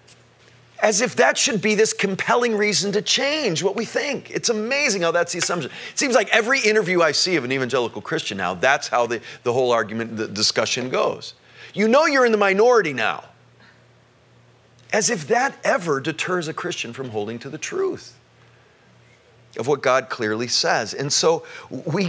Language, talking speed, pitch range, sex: English, 180 wpm, 140-210 Hz, male